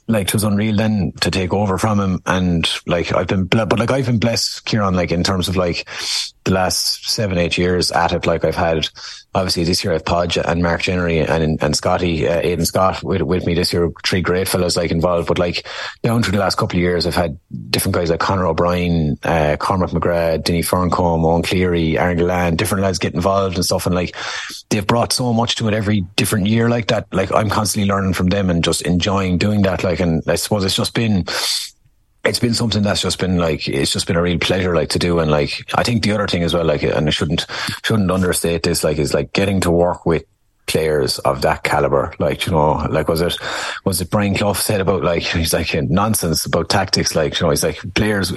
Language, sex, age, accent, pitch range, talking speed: English, male, 30-49, Irish, 85-105 Hz, 235 wpm